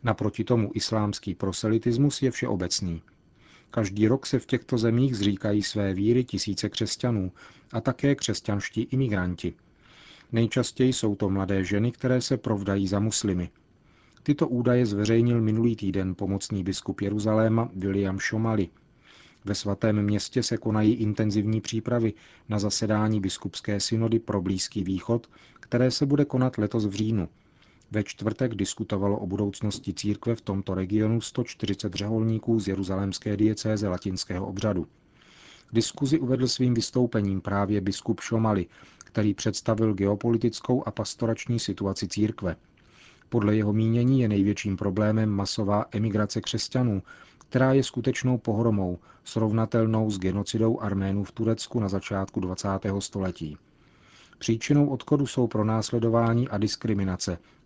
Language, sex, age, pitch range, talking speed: Czech, male, 40-59, 100-115 Hz, 125 wpm